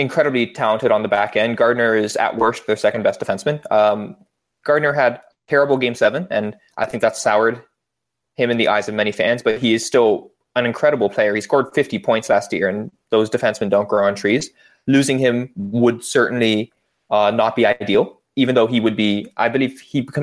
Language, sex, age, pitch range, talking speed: English, male, 20-39, 105-145 Hz, 200 wpm